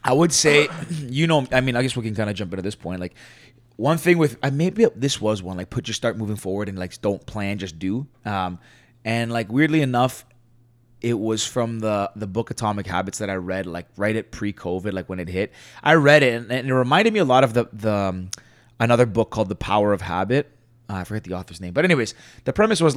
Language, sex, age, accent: English, male, 20-39, American